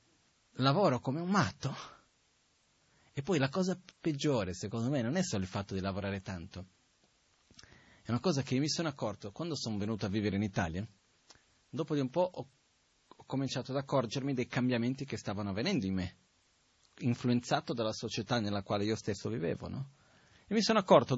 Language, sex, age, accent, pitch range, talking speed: Italian, male, 30-49, native, 105-145 Hz, 175 wpm